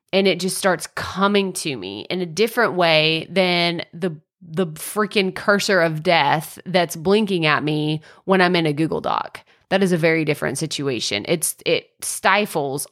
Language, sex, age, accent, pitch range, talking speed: English, female, 30-49, American, 170-205 Hz, 170 wpm